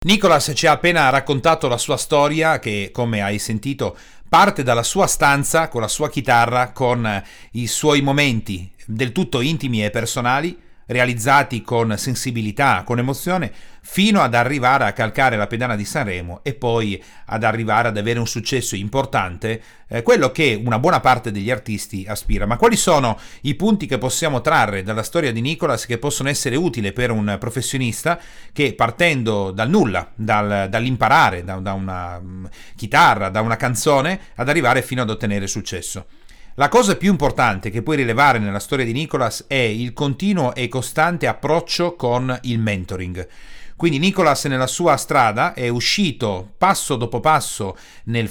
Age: 40-59